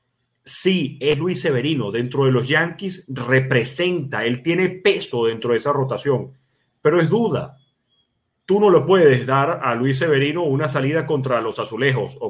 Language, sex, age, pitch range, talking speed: Spanish, male, 30-49, 125-150 Hz, 160 wpm